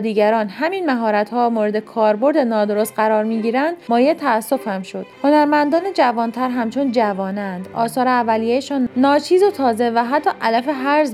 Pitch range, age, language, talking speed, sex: 215-265 Hz, 30-49, Persian, 140 wpm, female